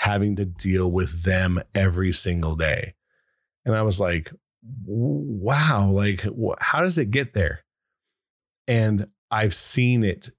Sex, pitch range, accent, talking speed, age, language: male, 90-110 Hz, American, 135 wpm, 30-49, English